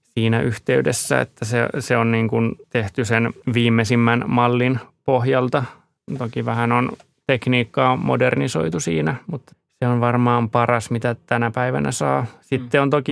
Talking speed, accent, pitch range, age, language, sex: 140 wpm, native, 115-125 Hz, 20-39, Finnish, male